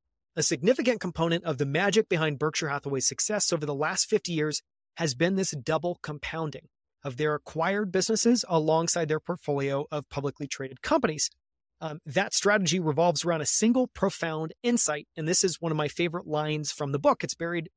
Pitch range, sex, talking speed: 145-180 Hz, male, 180 wpm